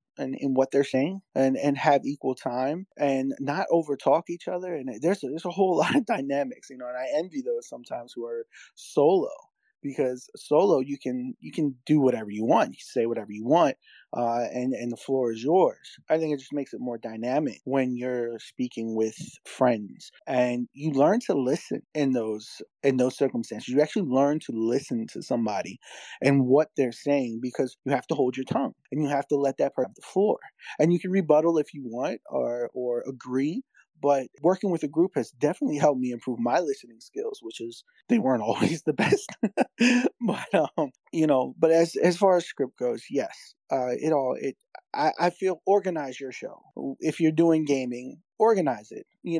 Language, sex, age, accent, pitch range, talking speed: English, male, 20-39, American, 130-175 Hz, 205 wpm